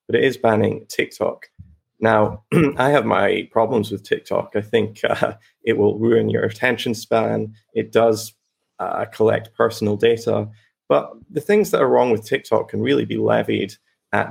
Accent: British